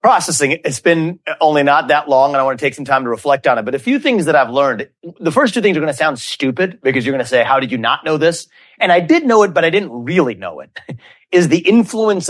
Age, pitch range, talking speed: 30-49, 135-185 Hz, 290 wpm